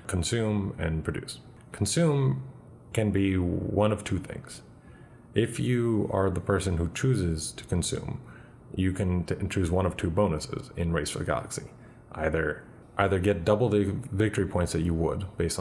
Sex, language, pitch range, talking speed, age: male, English, 80-100 Hz, 160 wpm, 30-49